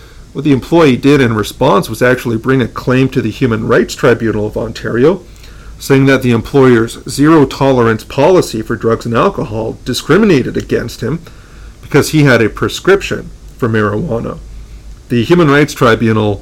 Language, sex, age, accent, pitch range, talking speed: English, male, 40-59, American, 115-135 Hz, 155 wpm